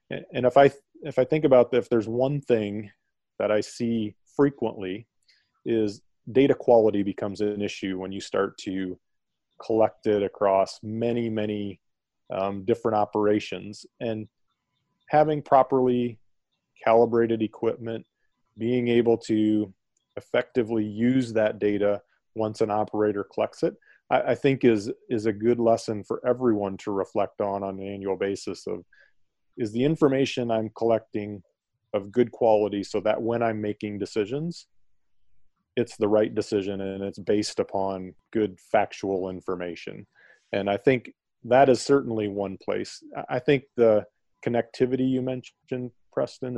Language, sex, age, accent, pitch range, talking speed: English, male, 30-49, American, 105-120 Hz, 140 wpm